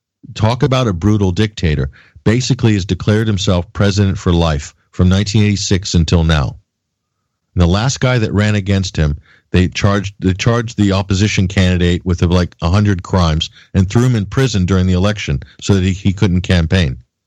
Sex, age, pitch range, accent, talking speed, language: male, 50-69, 90-105 Hz, American, 175 wpm, English